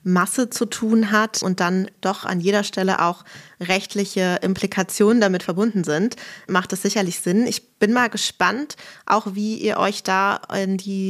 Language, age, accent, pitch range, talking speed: German, 20-39, German, 185-215 Hz, 170 wpm